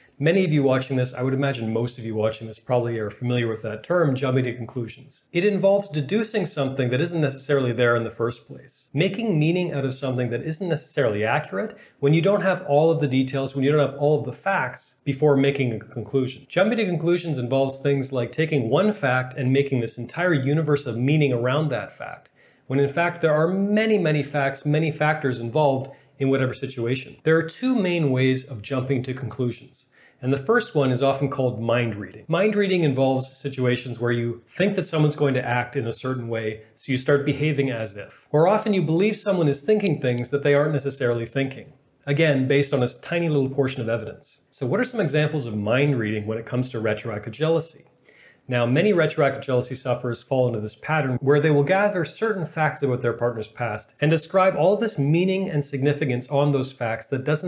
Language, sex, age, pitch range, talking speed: English, male, 30-49, 125-155 Hz, 210 wpm